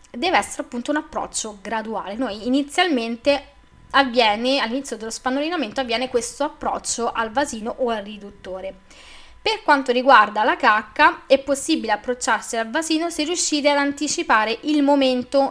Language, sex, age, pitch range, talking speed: Italian, female, 20-39, 220-295 Hz, 140 wpm